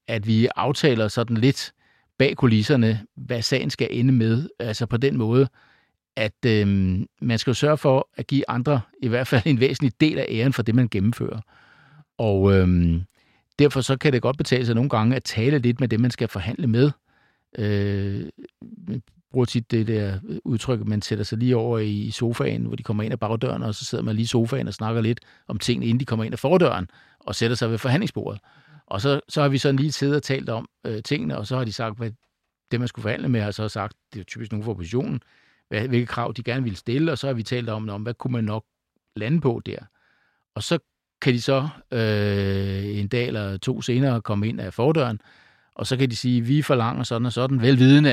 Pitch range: 110-130 Hz